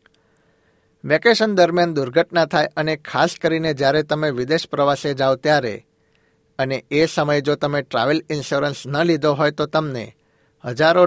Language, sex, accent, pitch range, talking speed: Gujarati, male, native, 140-165 Hz, 125 wpm